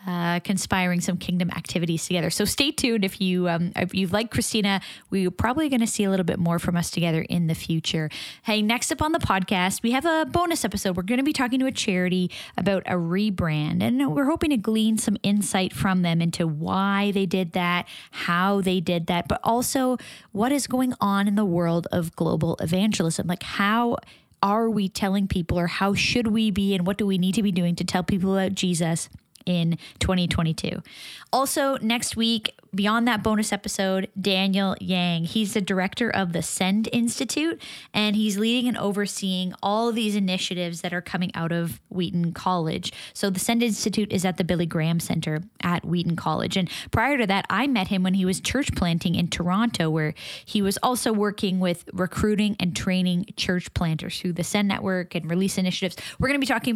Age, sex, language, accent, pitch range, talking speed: 20-39, female, English, American, 180-220 Hz, 200 wpm